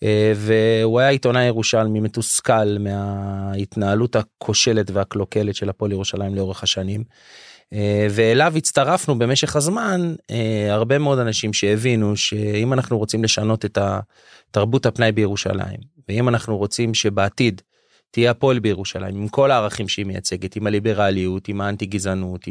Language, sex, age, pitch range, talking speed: Hebrew, male, 30-49, 100-125 Hz, 125 wpm